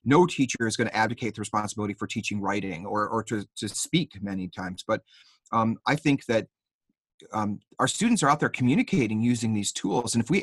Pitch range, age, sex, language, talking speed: 110-155 Hz, 30-49, male, English, 205 wpm